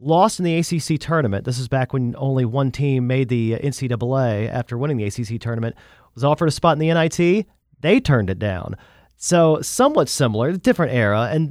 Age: 40-59